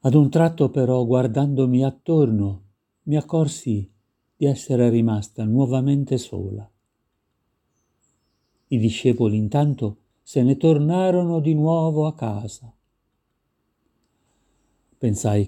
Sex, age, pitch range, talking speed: male, 50-69, 105-125 Hz, 95 wpm